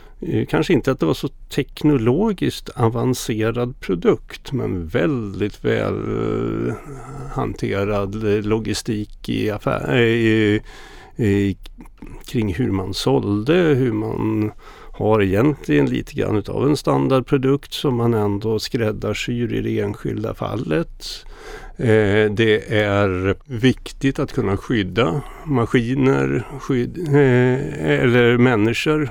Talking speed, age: 105 wpm, 60-79